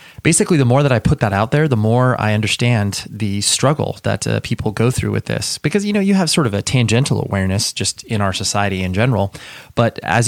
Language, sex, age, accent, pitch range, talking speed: English, male, 30-49, American, 100-130 Hz, 235 wpm